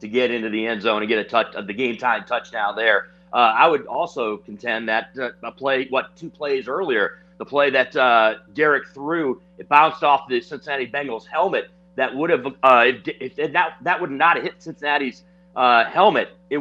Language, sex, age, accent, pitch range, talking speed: English, male, 40-59, American, 115-160 Hz, 205 wpm